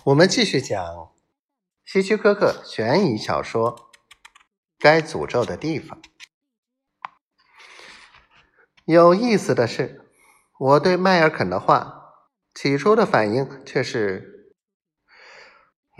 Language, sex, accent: Chinese, male, native